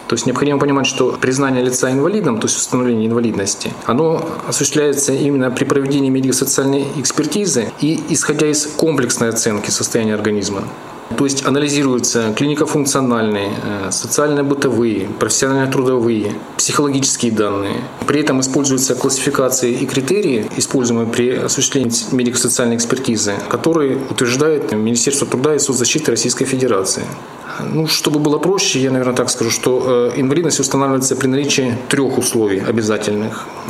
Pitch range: 120-140 Hz